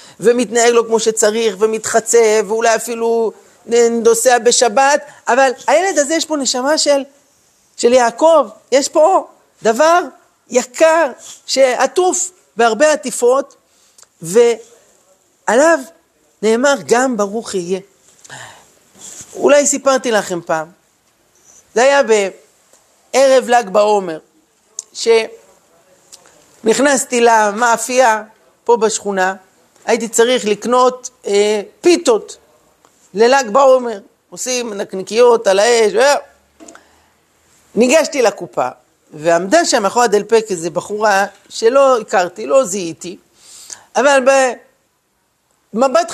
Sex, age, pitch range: male, 50-69, 215-285 Hz